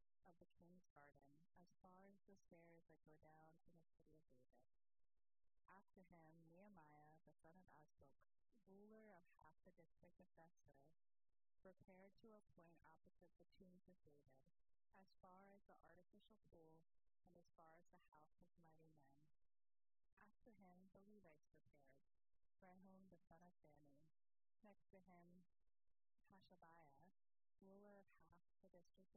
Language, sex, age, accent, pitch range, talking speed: English, female, 30-49, American, 145-185 Hz, 150 wpm